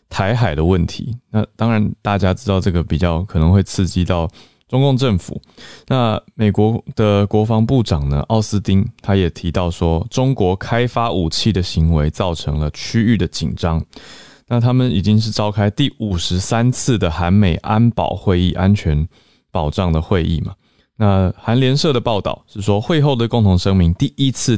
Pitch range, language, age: 85-115 Hz, Chinese, 20-39